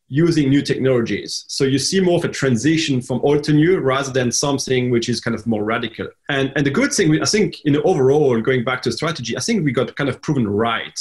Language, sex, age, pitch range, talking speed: English, male, 30-49, 120-145 Hz, 245 wpm